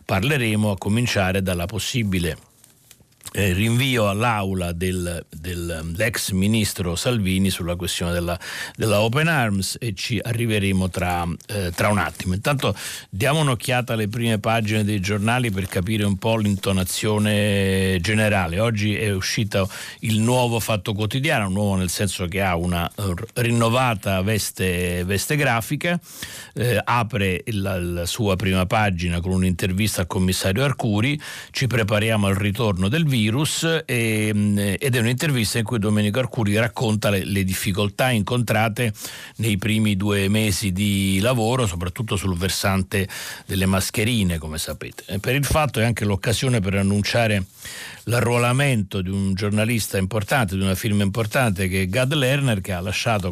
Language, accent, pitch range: Italian, native, 95-115 Hz